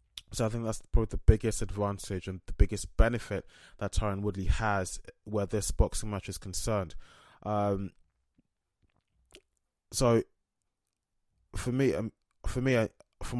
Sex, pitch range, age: male, 95-110 Hz, 20-39